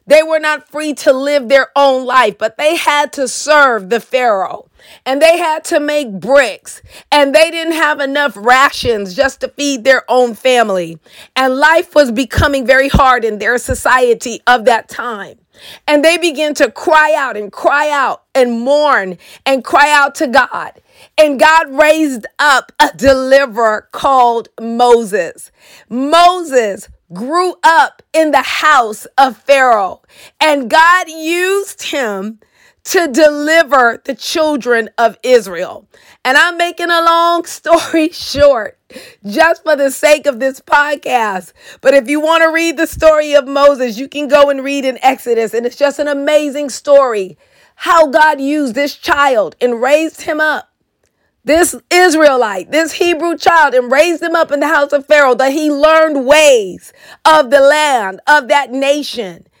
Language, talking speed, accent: English, 160 wpm, American